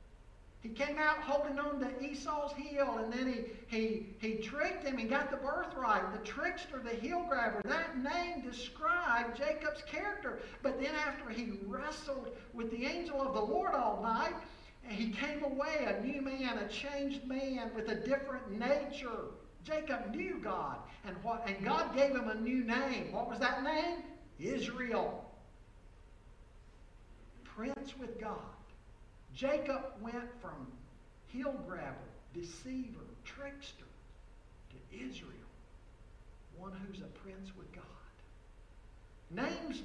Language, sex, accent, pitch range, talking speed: English, male, American, 225-290 Hz, 135 wpm